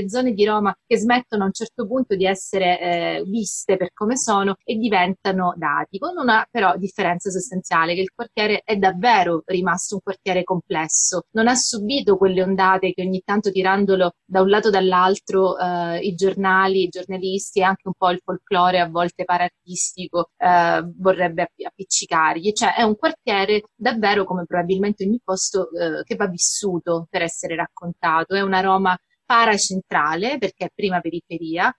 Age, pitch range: 30-49, 180-210 Hz